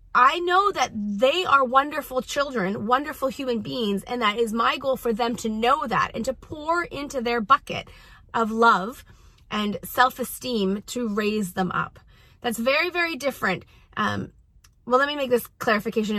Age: 30-49